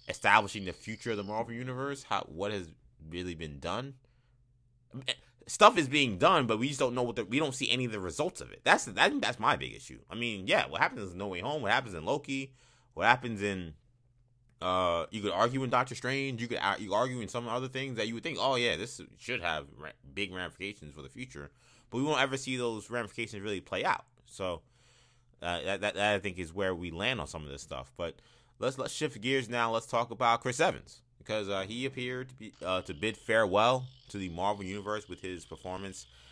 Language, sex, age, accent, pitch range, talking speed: English, male, 20-39, American, 95-125 Hz, 225 wpm